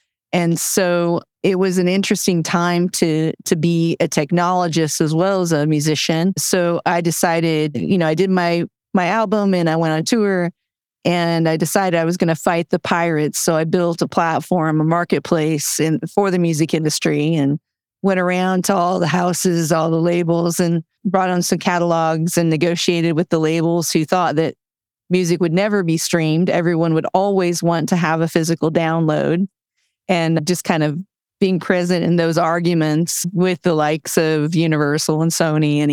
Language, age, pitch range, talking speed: English, 40-59, 155-180 Hz, 180 wpm